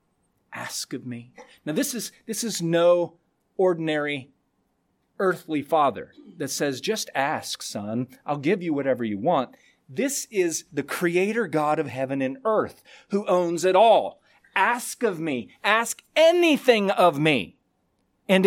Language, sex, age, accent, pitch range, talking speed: English, male, 40-59, American, 150-200 Hz, 145 wpm